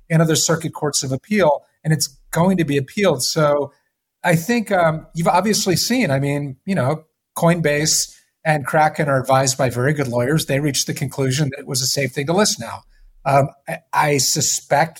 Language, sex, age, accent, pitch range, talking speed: English, male, 30-49, American, 135-175 Hz, 195 wpm